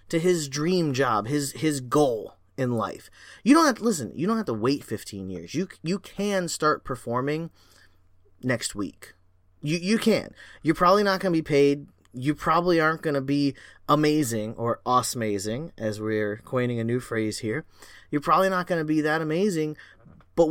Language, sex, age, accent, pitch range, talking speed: English, male, 20-39, American, 115-170 Hz, 175 wpm